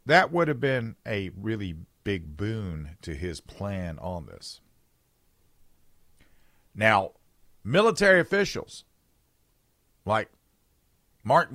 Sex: male